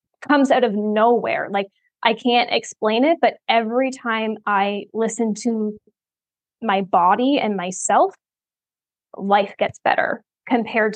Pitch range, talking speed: 210-255 Hz, 125 wpm